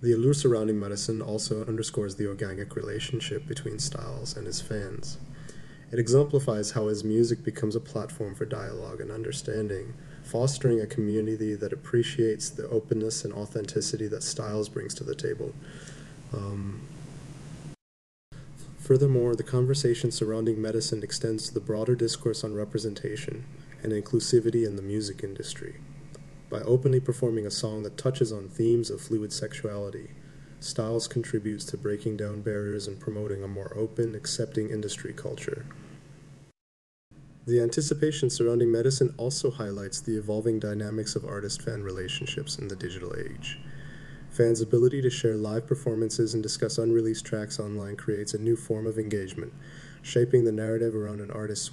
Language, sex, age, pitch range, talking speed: English, male, 30-49, 110-140 Hz, 145 wpm